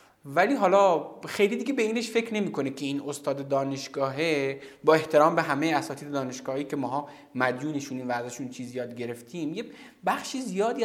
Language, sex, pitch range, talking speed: Persian, male, 140-205 Hz, 150 wpm